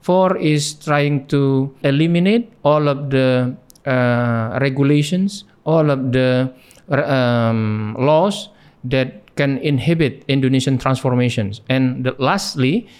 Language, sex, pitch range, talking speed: English, male, 125-150 Hz, 100 wpm